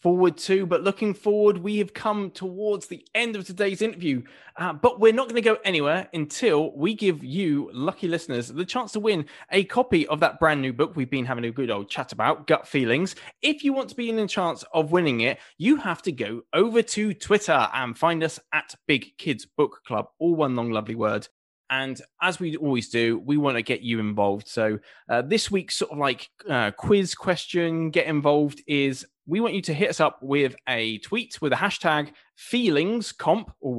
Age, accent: 20-39, British